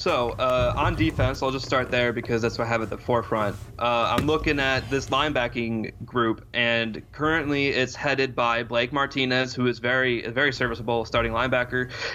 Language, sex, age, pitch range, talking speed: English, male, 20-39, 115-130 Hz, 185 wpm